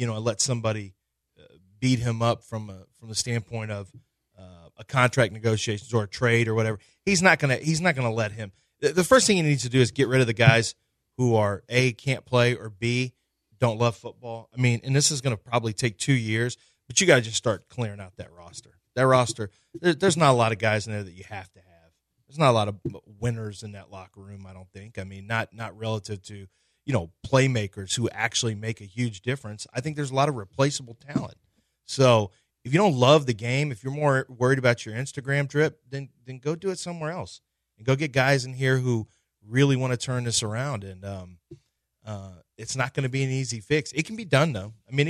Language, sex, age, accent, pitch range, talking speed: English, male, 30-49, American, 110-135 Hz, 240 wpm